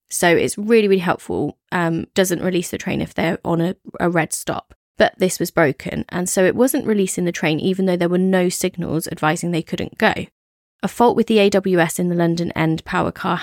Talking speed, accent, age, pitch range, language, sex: 220 wpm, British, 20-39, 175-230 Hz, English, female